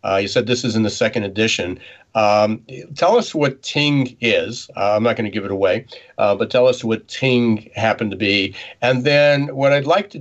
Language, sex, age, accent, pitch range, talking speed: English, male, 50-69, American, 110-125 Hz, 230 wpm